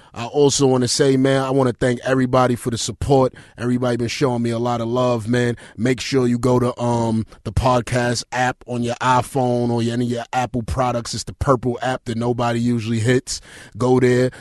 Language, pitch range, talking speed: English, 120-135 Hz, 210 wpm